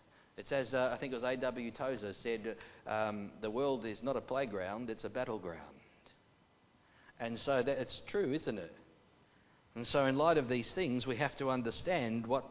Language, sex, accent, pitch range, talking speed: English, male, Australian, 110-145 Hz, 180 wpm